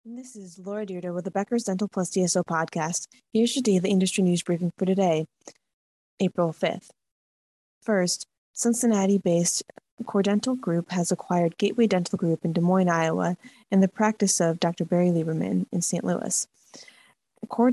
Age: 20-39